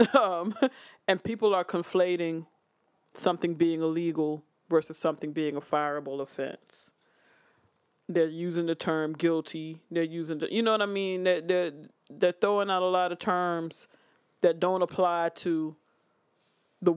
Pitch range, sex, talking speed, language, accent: 155-180 Hz, male, 145 wpm, English, American